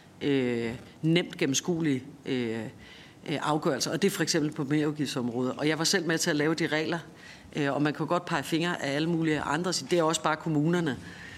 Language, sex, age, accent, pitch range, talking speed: Danish, female, 40-59, native, 145-170 Hz, 205 wpm